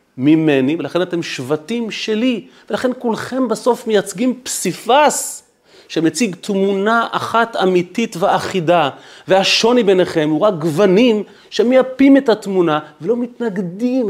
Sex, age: male, 30-49